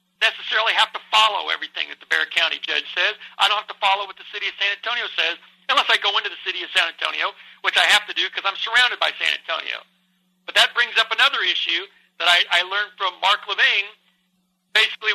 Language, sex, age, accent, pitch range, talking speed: English, male, 60-79, American, 185-230 Hz, 225 wpm